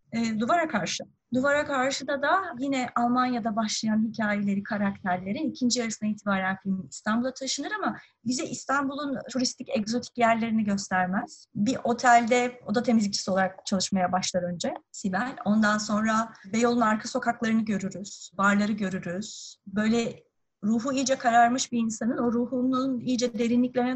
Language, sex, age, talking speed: Turkish, female, 30-49, 130 wpm